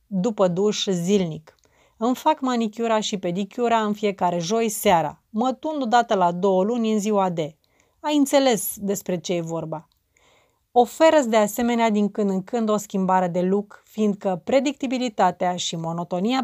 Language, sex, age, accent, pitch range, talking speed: Romanian, female, 30-49, native, 185-230 Hz, 150 wpm